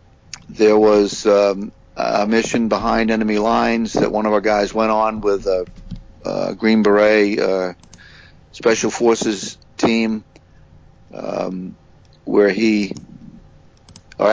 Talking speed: 115 wpm